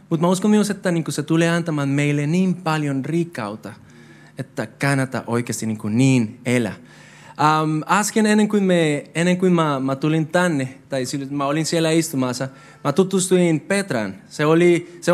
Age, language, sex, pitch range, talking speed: 20-39, Finnish, male, 145-190 Hz, 160 wpm